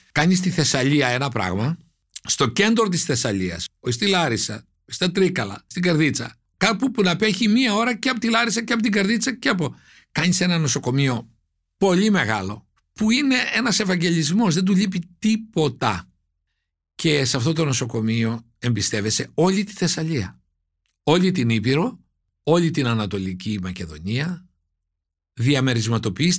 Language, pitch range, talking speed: Greek, 115-180 Hz, 140 wpm